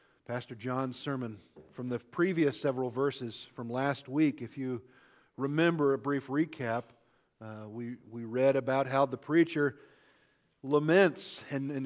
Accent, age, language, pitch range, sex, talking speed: American, 50-69, English, 125-150 Hz, male, 140 wpm